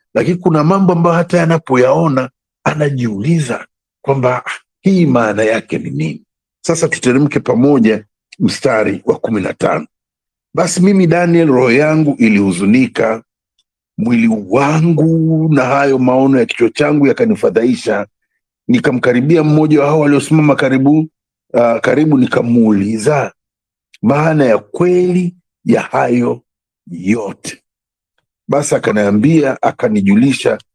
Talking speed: 95 wpm